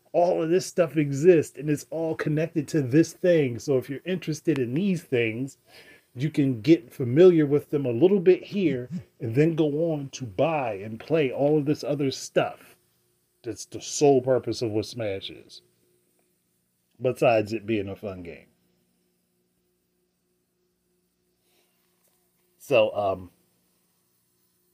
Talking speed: 150 wpm